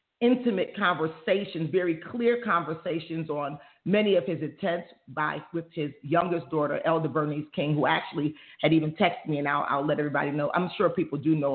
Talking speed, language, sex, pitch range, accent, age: 175 wpm, English, female, 150-190 Hz, American, 40-59